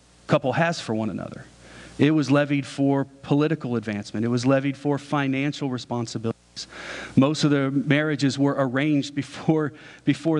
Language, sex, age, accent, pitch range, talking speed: English, male, 40-59, American, 125-150 Hz, 145 wpm